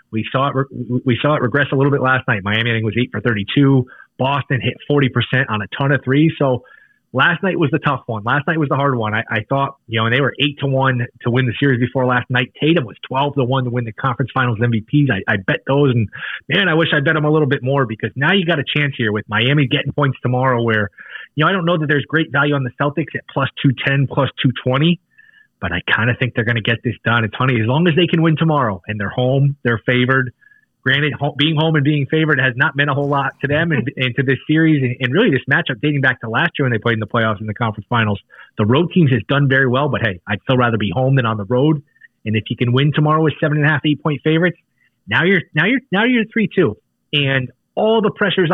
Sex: male